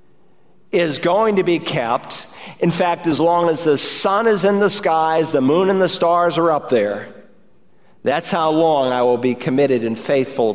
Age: 50-69